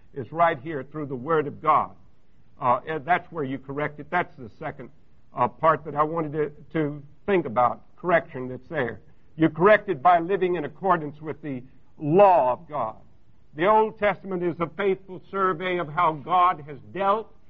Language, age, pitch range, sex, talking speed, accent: English, 60-79, 150-200 Hz, male, 185 wpm, American